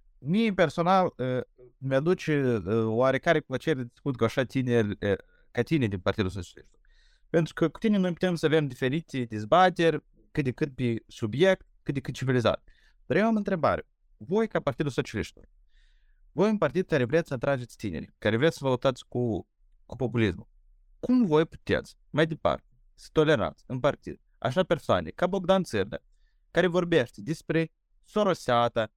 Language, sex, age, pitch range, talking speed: Romanian, male, 30-49, 120-170 Hz, 150 wpm